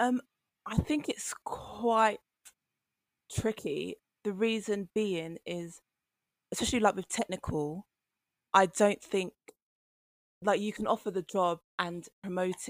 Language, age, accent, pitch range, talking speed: English, 20-39, British, 160-185 Hz, 120 wpm